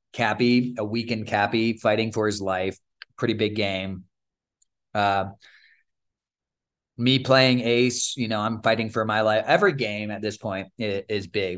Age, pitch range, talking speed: 20-39, 100-120 Hz, 150 wpm